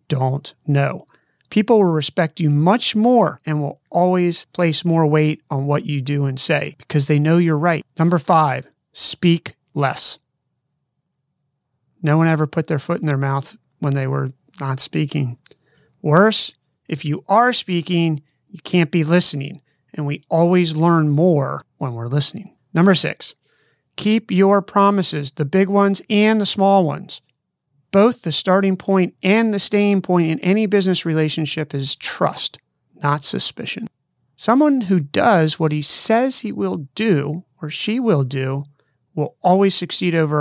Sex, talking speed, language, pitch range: male, 155 wpm, English, 145-190 Hz